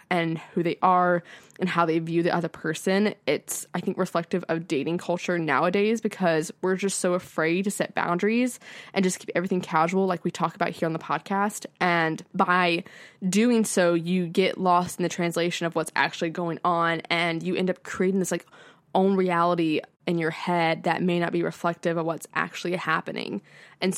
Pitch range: 165-190 Hz